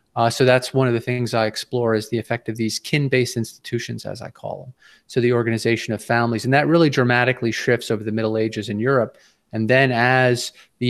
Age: 30-49